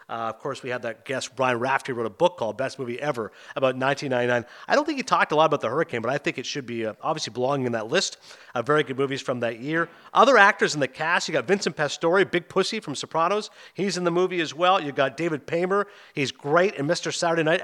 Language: English